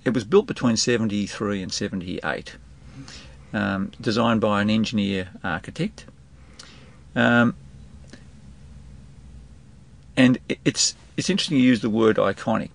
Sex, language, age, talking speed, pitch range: male, English, 50-69, 115 wpm, 70-110 Hz